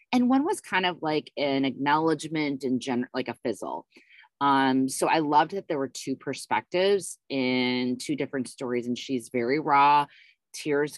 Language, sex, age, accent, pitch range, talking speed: English, female, 20-39, American, 125-155 Hz, 170 wpm